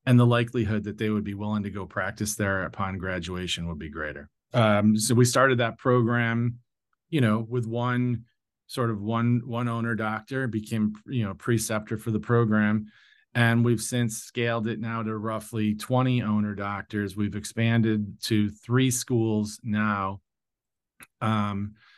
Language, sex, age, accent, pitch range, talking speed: English, male, 40-59, American, 100-115 Hz, 160 wpm